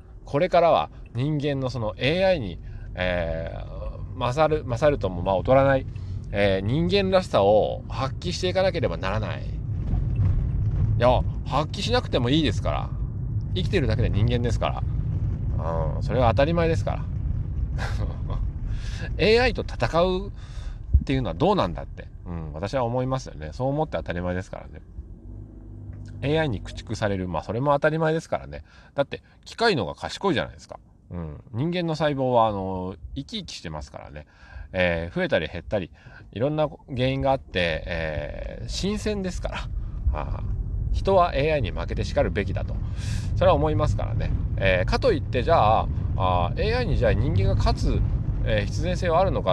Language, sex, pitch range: Japanese, male, 95-125 Hz